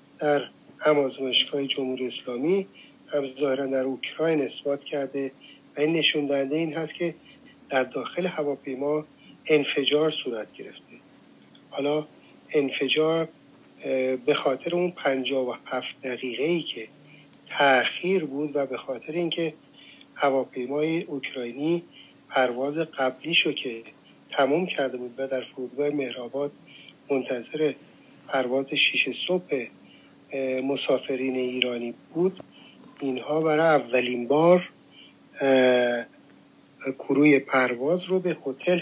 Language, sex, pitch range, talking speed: Persian, male, 130-155 Hz, 110 wpm